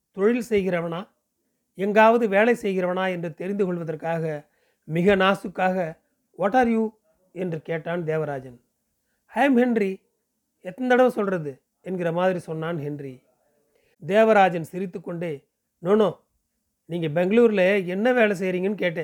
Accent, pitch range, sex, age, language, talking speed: native, 165-215 Hz, male, 40-59, Tamil, 105 wpm